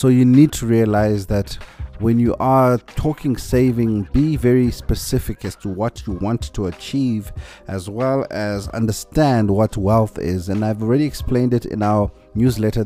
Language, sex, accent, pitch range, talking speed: English, male, South African, 100-130 Hz, 170 wpm